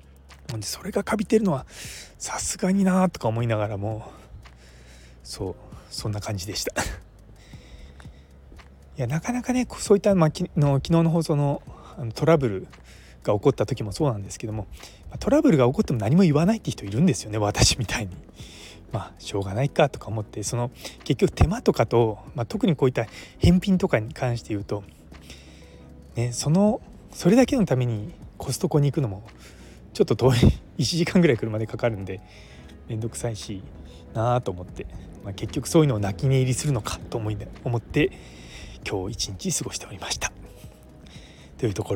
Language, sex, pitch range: Japanese, male, 95-140 Hz